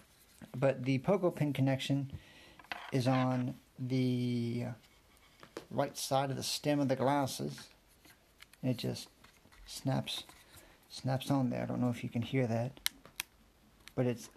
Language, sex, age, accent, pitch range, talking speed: English, male, 40-59, American, 120-145 Hz, 140 wpm